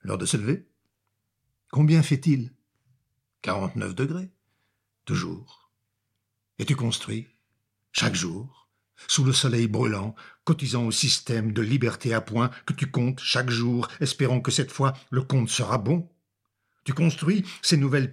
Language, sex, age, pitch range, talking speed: French, male, 60-79, 115-150 Hz, 140 wpm